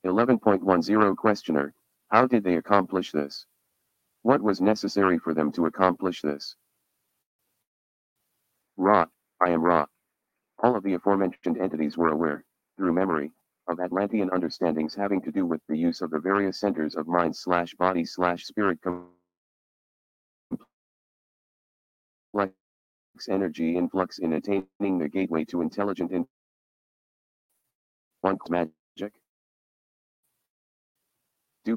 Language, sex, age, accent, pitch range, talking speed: English, male, 40-59, American, 80-100 Hz, 105 wpm